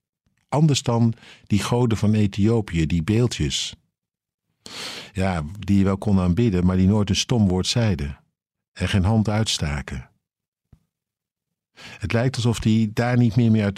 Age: 50-69